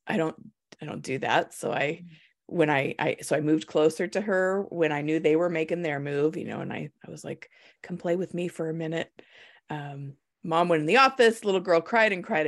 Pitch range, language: 155-205 Hz, English